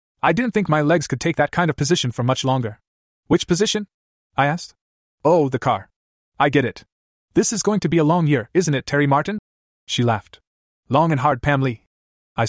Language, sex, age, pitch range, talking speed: English, male, 30-49, 110-150 Hz, 210 wpm